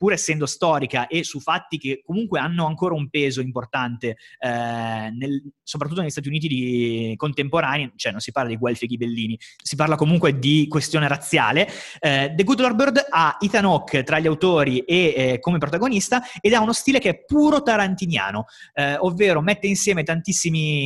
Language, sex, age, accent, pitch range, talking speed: Italian, male, 30-49, native, 140-195 Hz, 180 wpm